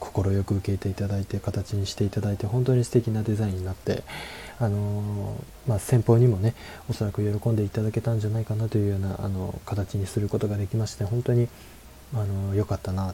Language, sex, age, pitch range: Japanese, male, 20-39, 100-120 Hz